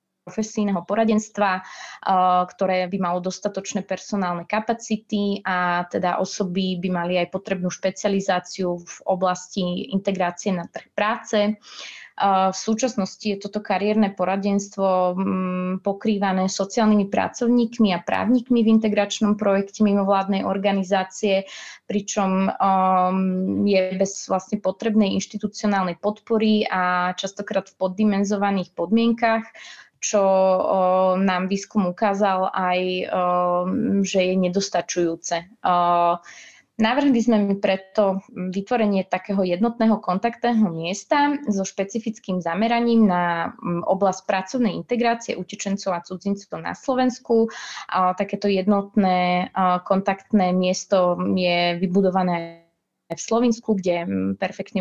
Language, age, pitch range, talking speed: Slovak, 20-39, 185-210 Hz, 100 wpm